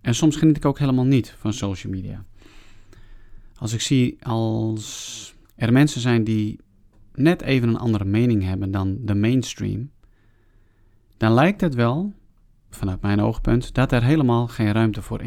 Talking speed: 155 wpm